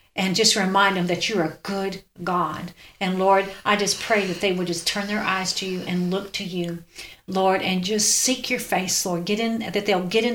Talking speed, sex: 230 wpm, female